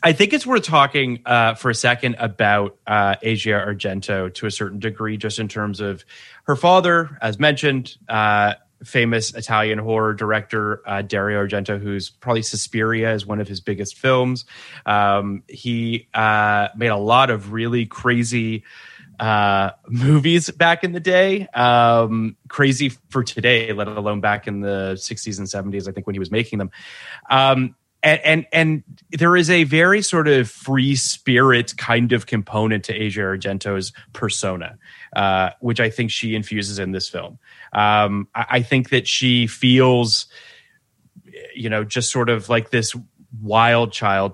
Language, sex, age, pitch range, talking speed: English, male, 30-49, 105-130 Hz, 160 wpm